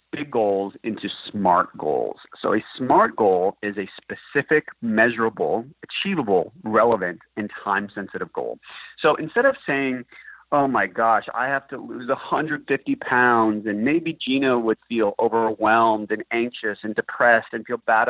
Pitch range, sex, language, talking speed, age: 110-155 Hz, male, English, 145 wpm, 30-49